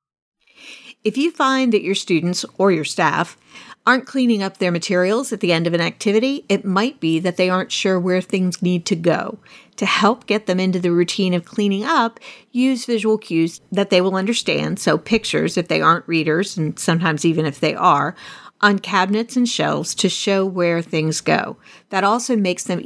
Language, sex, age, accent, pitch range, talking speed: English, female, 50-69, American, 175-230 Hz, 195 wpm